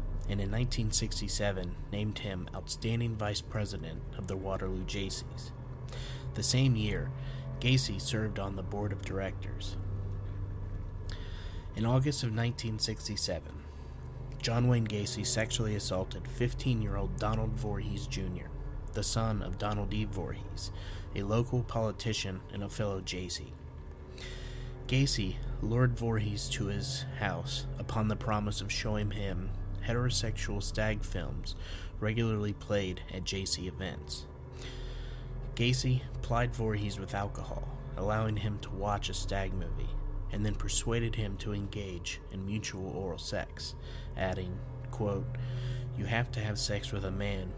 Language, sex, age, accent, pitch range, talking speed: English, male, 30-49, American, 95-115 Hz, 125 wpm